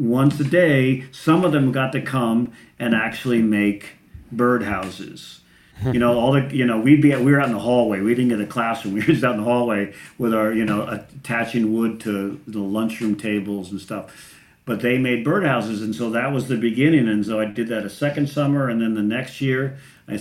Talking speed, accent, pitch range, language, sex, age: 225 wpm, American, 105-120 Hz, English, male, 50-69